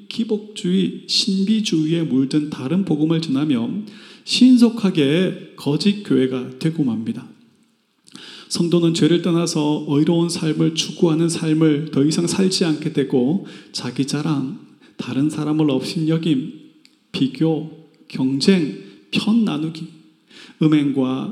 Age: 40-59